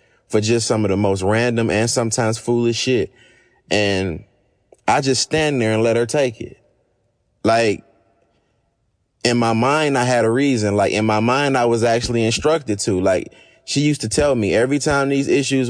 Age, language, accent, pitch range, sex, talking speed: 20-39, English, American, 110-130 Hz, male, 185 wpm